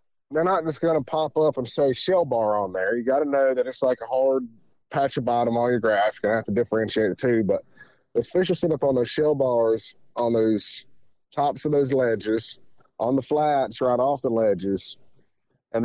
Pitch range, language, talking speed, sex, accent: 115-140 Hz, English, 225 wpm, male, American